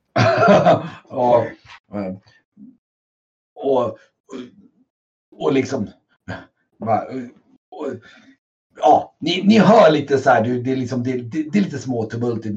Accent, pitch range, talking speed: native, 125-195 Hz, 115 wpm